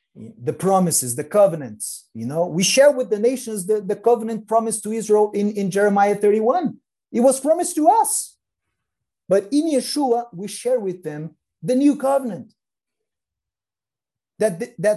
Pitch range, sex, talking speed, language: 165-220 Hz, male, 150 wpm, English